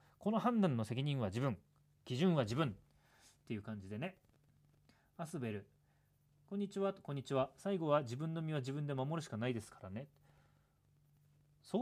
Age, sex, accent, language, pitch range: 40-59, male, native, Japanese, 115-170 Hz